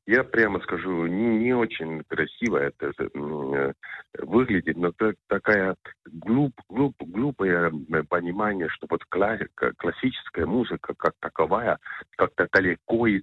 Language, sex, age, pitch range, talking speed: Hebrew, male, 50-69, 80-115 Hz, 120 wpm